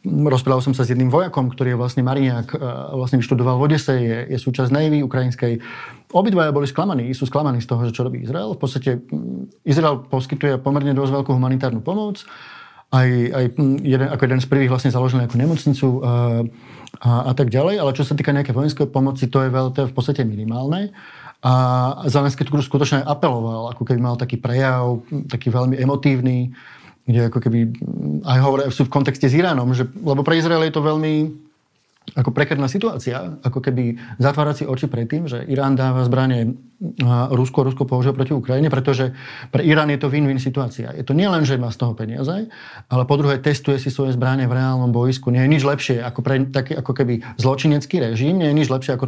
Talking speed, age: 195 wpm, 20-39